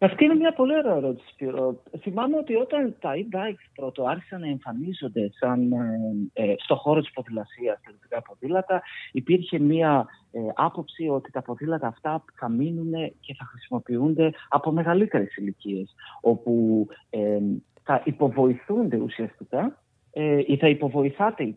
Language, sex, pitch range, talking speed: Greek, male, 125-185 Hz, 135 wpm